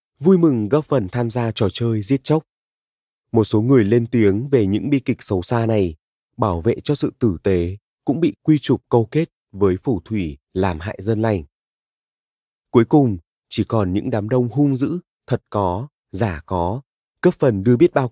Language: Vietnamese